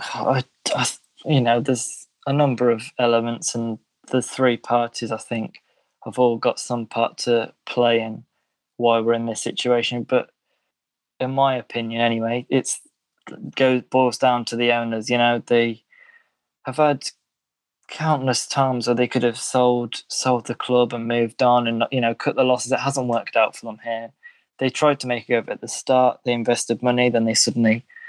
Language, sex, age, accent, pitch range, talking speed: English, male, 20-39, British, 120-130 Hz, 185 wpm